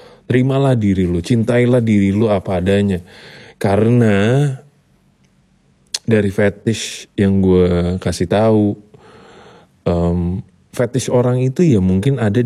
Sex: male